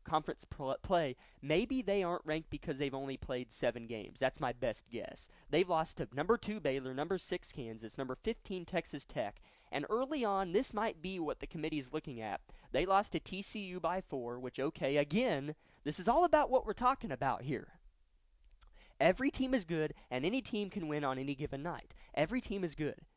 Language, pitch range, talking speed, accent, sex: English, 135-200 Hz, 195 wpm, American, male